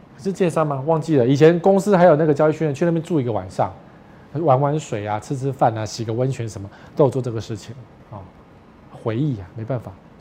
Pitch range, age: 125-180 Hz, 20-39